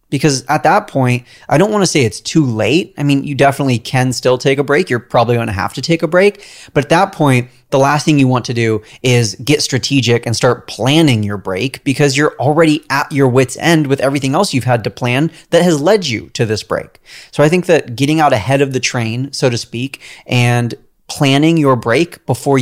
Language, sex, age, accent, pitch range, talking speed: English, male, 30-49, American, 120-150 Hz, 235 wpm